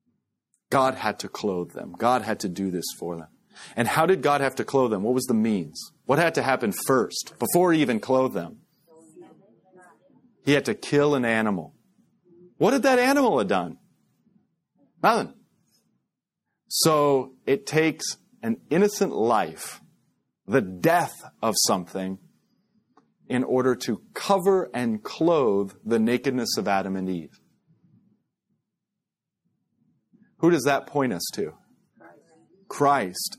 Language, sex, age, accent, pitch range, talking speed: English, male, 40-59, American, 120-165 Hz, 135 wpm